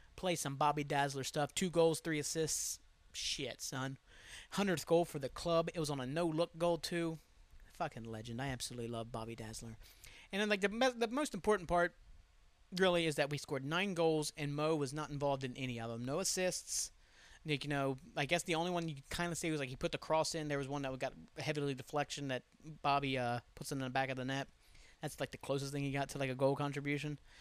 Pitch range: 125-155 Hz